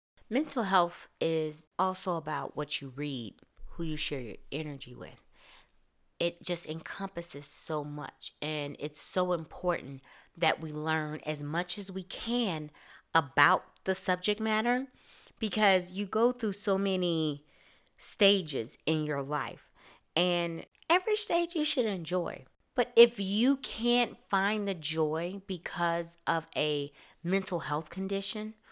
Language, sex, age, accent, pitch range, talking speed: English, female, 30-49, American, 150-190 Hz, 135 wpm